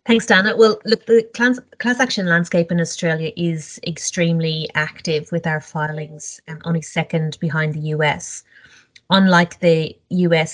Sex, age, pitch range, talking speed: female, 30-49, 150-170 Hz, 150 wpm